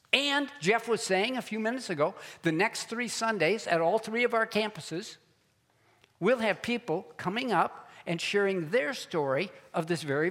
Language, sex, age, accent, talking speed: English, male, 60-79, American, 175 wpm